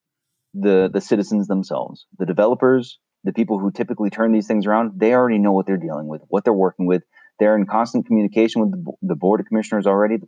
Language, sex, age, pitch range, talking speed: English, male, 30-49, 95-115 Hz, 215 wpm